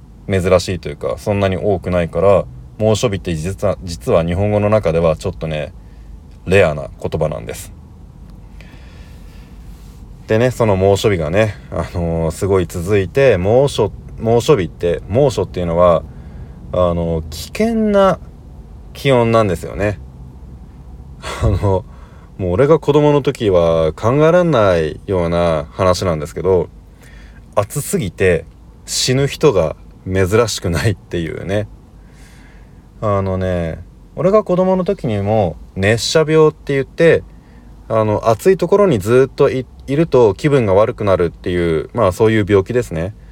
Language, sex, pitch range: Japanese, male, 85-120 Hz